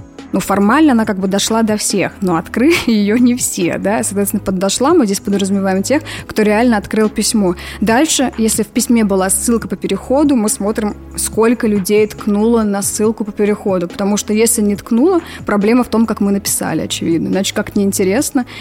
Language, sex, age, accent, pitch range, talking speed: Russian, female, 20-39, native, 195-230 Hz, 180 wpm